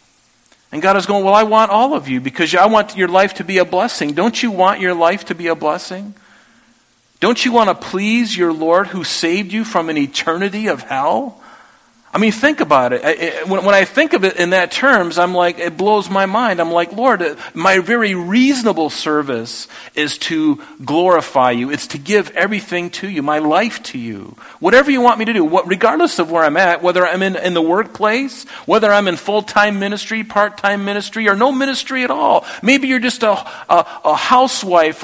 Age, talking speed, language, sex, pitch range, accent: 40-59, 200 wpm, English, male, 145-210 Hz, American